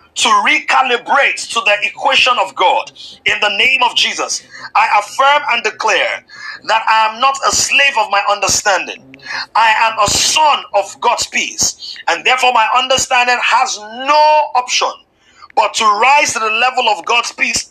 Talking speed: 165 wpm